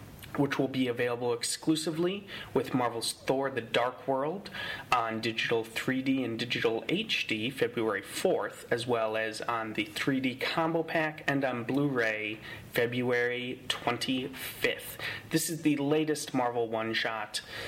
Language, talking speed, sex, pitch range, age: English, 130 wpm, male, 115-150 Hz, 30-49